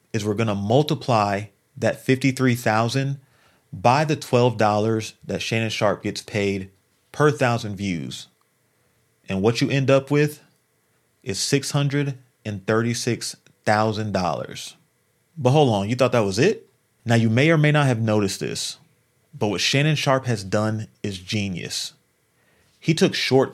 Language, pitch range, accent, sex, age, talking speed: English, 105-135 Hz, American, male, 30-49, 135 wpm